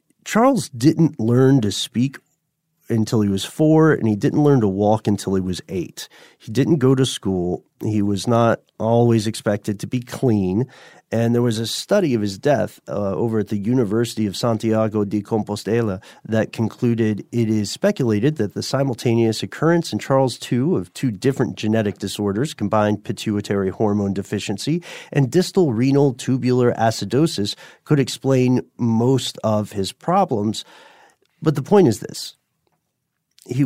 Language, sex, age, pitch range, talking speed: English, male, 40-59, 105-135 Hz, 155 wpm